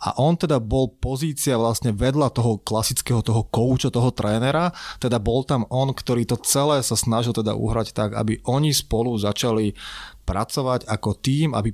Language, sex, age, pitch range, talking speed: Slovak, male, 20-39, 105-125 Hz, 170 wpm